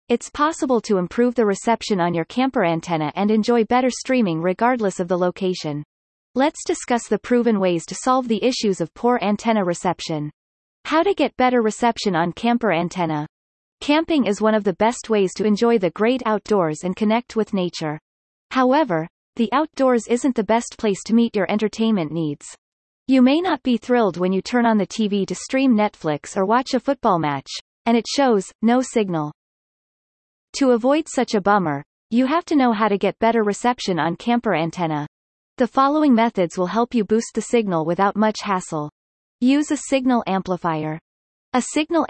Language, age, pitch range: English, 30-49, 185-245 Hz